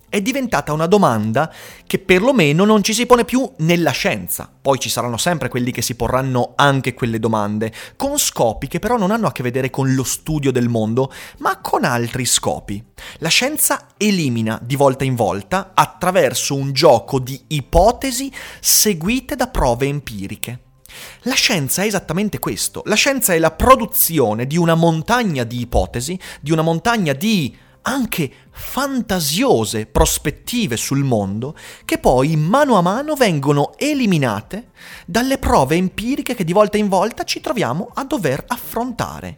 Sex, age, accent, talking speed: male, 30-49, native, 155 wpm